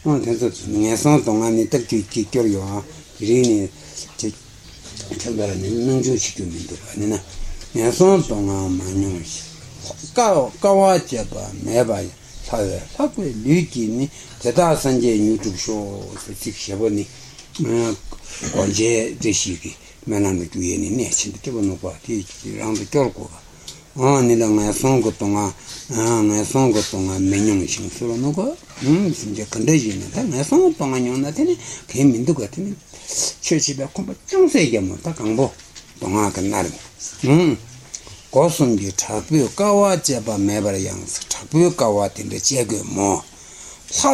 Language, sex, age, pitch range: Italian, male, 60-79, 100-140 Hz